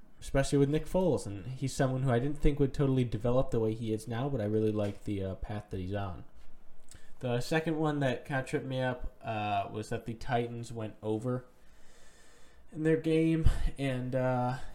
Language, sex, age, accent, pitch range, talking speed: English, male, 10-29, American, 110-135 Hz, 200 wpm